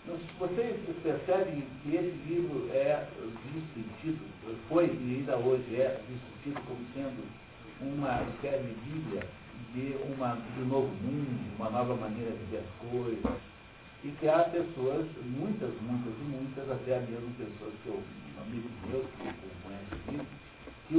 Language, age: Portuguese, 60-79